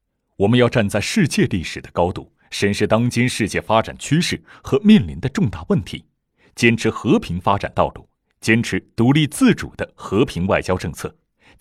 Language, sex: Chinese, male